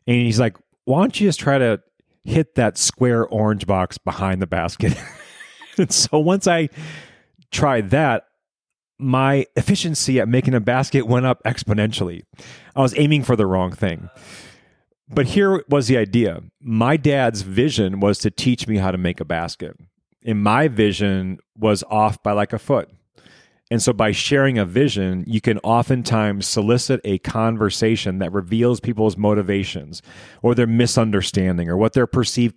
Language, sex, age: English, male, 30-49